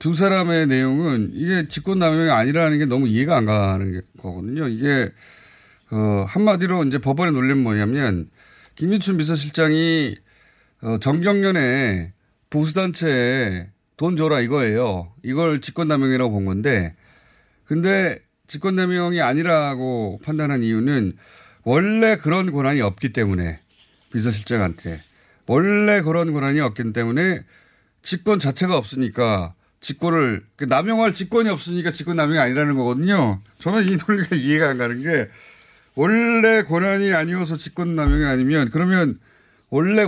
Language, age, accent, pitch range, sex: Korean, 30-49, native, 110-165 Hz, male